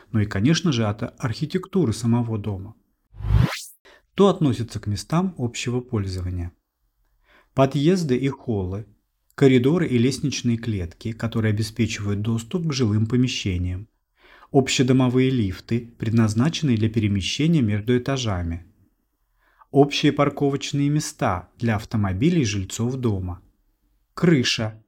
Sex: male